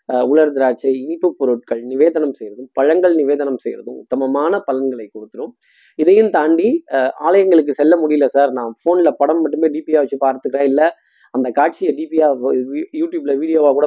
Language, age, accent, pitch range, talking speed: Tamil, 20-39, native, 140-200 Hz, 145 wpm